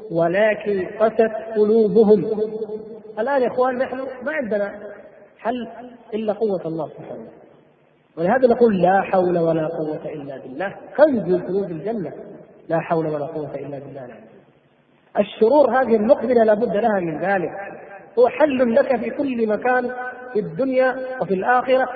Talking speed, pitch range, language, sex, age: 130 wpm, 180-230 Hz, Arabic, male, 40-59